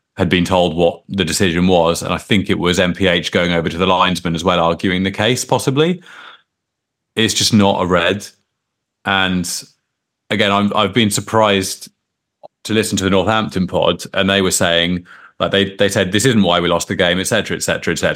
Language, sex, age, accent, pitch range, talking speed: English, male, 30-49, British, 90-105 Hz, 190 wpm